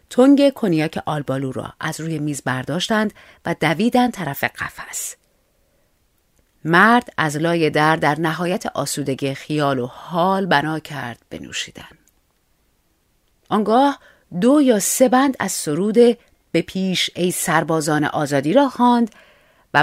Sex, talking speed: female, 120 wpm